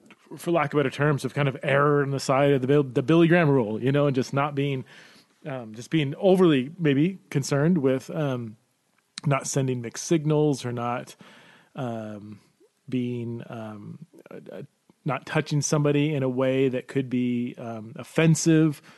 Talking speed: 170 wpm